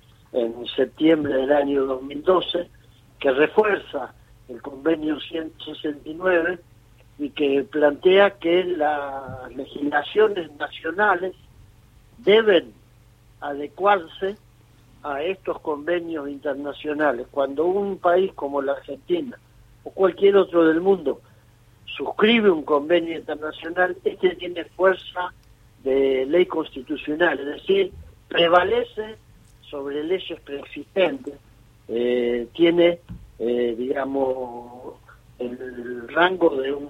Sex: male